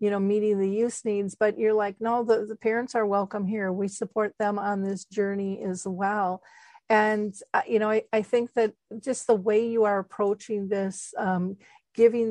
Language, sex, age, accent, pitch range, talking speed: English, female, 50-69, American, 195-220 Hz, 200 wpm